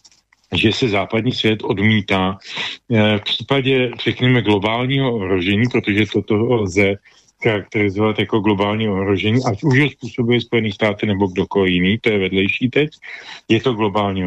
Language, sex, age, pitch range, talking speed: Slovak, male, 40-59, 105-130 Hz, 135 wpm